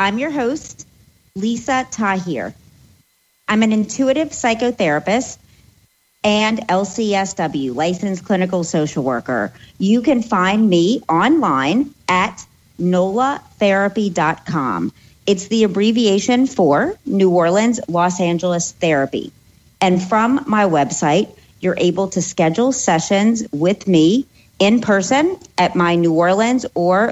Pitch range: 170-215 Hz